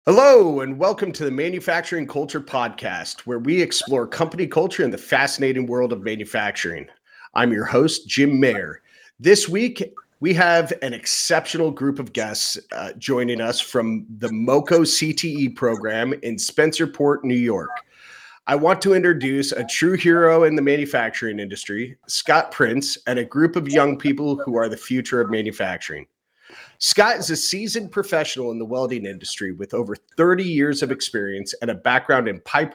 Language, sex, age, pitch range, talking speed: English, male, 30-49, 120-170 Hz, 165 wpm